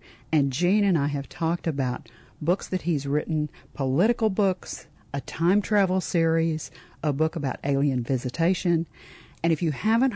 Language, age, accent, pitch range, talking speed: English, 50-69, American, 140-170 Hz, 155 wpm